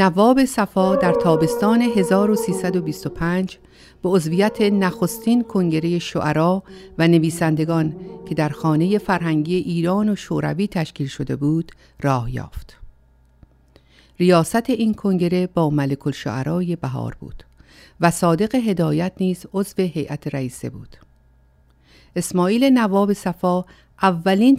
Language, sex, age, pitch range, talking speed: Persian, female, 50-69, 150-195 Hz, 105 wpm